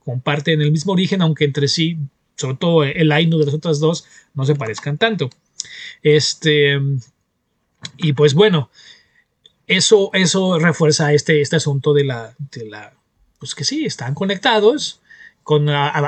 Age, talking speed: 30-49, 150 wpm